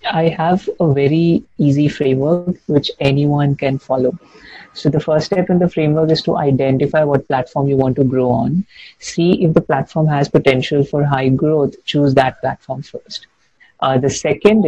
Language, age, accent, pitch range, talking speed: Hindi, 50-69, native, 135-155 Hz, 175 wpm